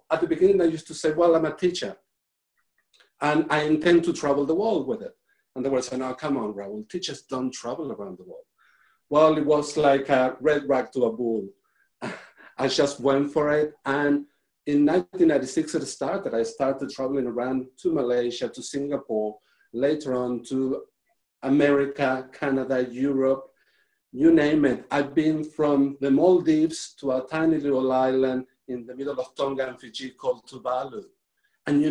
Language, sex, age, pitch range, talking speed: English, male, 50-69, 135-180 Hz, 175 wpm